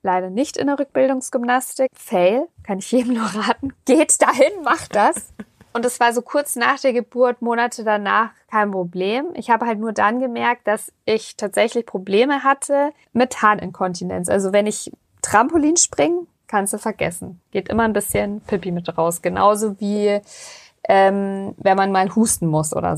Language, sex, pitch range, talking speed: German, female, 195-245 Hz, 165 wpm